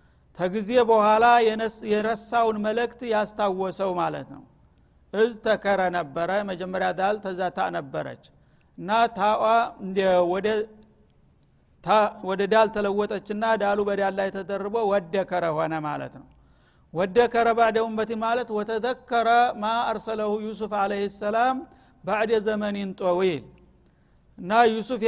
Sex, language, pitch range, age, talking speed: male, Amharic, 195-225 Hz, 60-79, 100 wpm